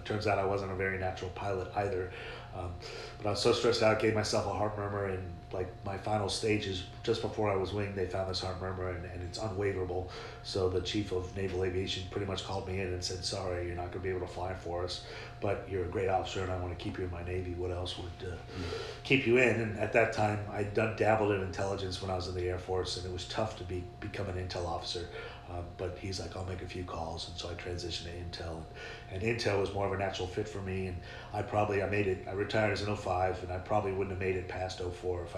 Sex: male